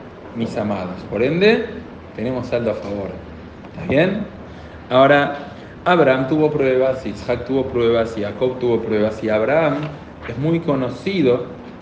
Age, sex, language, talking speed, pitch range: 40-59, male, Spanish, 135 wpm, 110-145 Hz